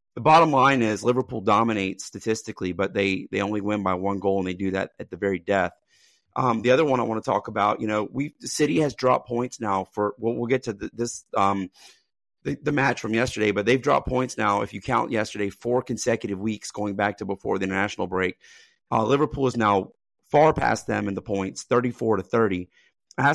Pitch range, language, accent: 100-120 Hz, English, American